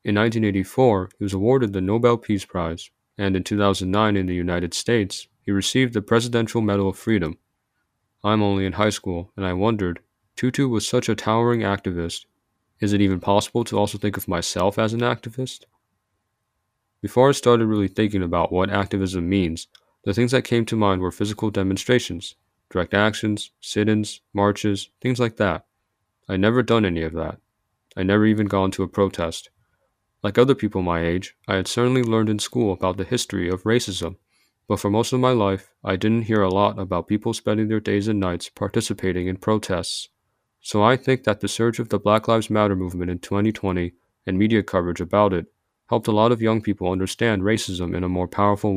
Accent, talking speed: American, 190 wpm